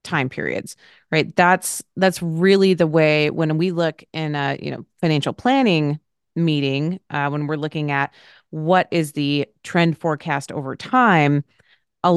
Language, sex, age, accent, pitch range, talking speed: English, female, 30-49, American, 145-175 Hz, 155 wpm